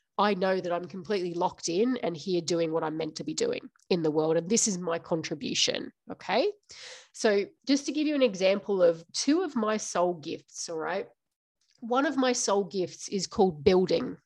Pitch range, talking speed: 185-255 Hz, 200 wpm